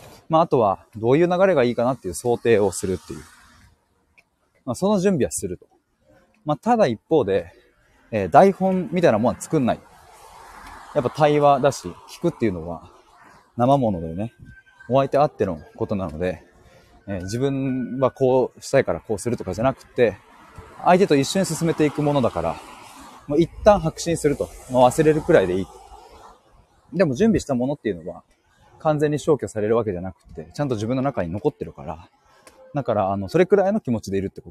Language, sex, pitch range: Japanese, male, 100-165 Hz